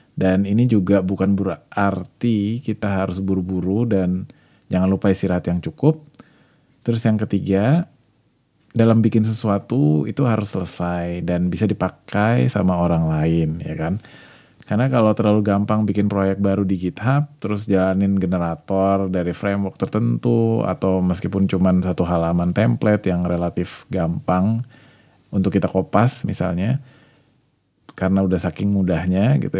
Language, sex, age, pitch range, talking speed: Indonesian, male, 20-39, 95-115 Hz, 130 wpm